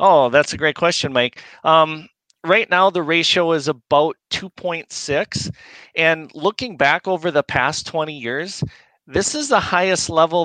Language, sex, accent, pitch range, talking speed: English, male, American, 130-170 Hz, 155 wpm